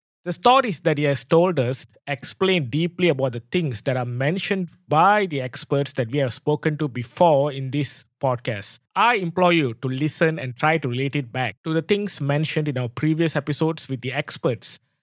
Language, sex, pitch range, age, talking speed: English, male, 130-165 Hz, 20-39, 195 wpm